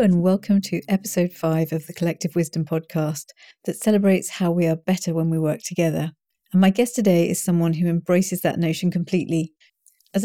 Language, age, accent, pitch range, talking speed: English, 40-59, British, 170-195 Hz, 185 wpm